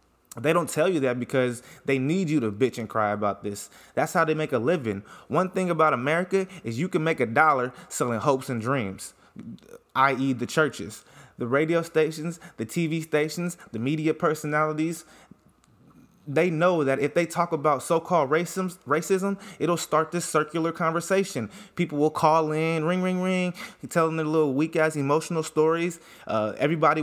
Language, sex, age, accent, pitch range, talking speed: English, male, 20-39, American, 125-165 Hz, 175 wpm